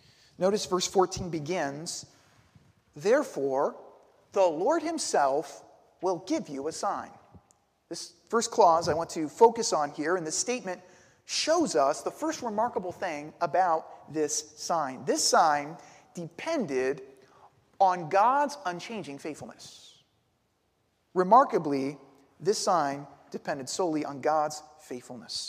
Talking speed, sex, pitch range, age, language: 115 wpm, male, 150-210 Hz, 40-59, English